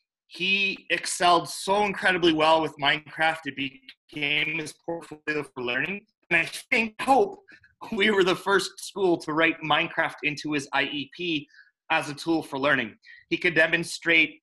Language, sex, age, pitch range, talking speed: English, male, 30-49, 145-170 Hz, 150 wpm